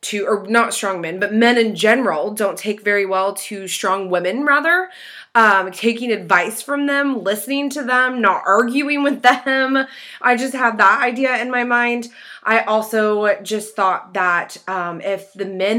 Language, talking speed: English, 170 wpm